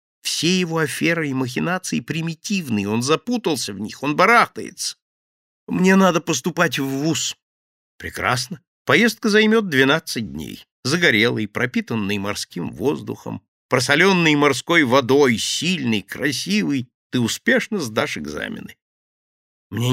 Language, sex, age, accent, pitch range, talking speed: Russian, male, 50-69, native, 105-160 Hz, 110 wpm